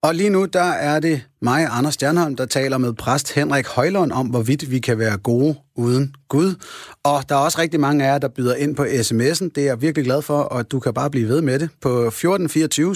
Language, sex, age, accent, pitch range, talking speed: Danish, male, 30-49, native, 115-150 Hz, 240 wpm